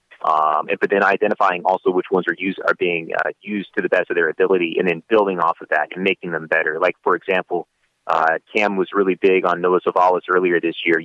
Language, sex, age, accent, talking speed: English, male, 30-49, American, 235 wpm